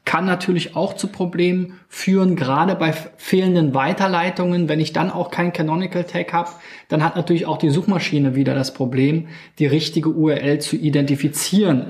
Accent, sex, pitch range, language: German, male, 140-170 Hz, German